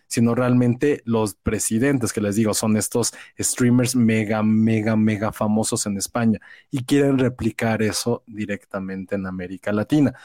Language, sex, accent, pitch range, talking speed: Spanish, male, Mexican, 110-140 Hz, 140 wpm